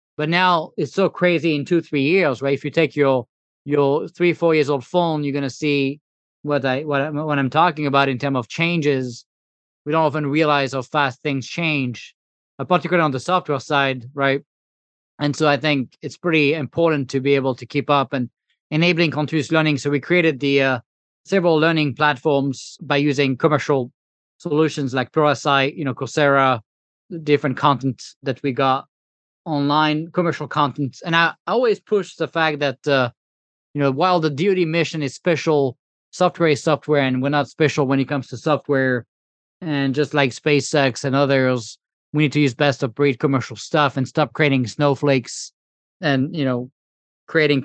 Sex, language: male, English